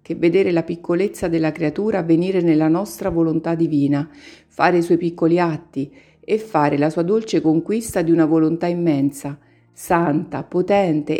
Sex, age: female, 50-69